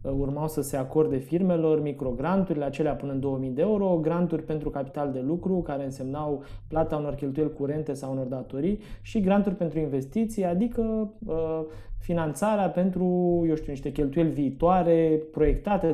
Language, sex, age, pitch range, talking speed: Romanian, male, 20-39, 140-165 Hz, 150 wpm